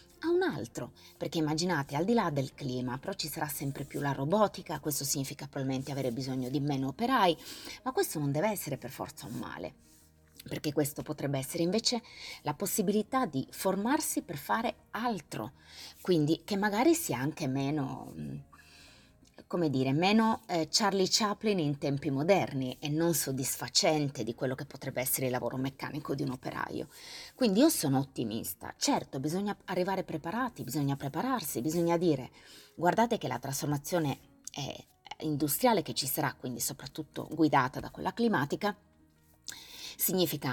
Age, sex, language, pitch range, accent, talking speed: 30-49, female, Italian, 135-185 Hz, native, 150 wpm